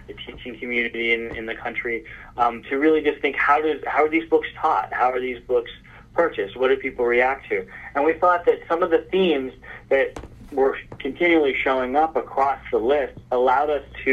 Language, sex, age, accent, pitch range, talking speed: English, male, 30-49, American, 115-145 Hz, 200 wpm